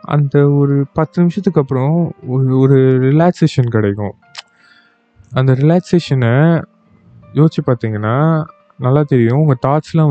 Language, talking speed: Tamil, 100 wpm